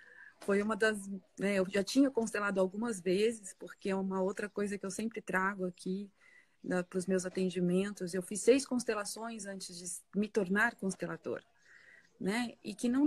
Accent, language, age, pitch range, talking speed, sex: Brazilian, Portuguese, 30-49, 180-215 Hz, 175 wpm, female